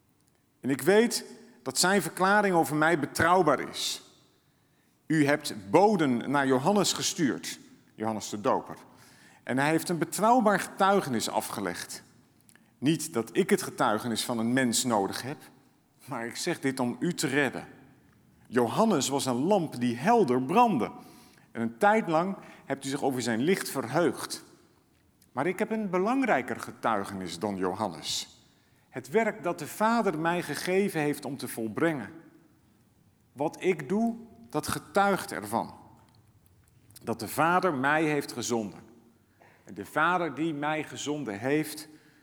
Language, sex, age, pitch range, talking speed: Dutch, male, 50-69, 120-180 Hz, 140 wpm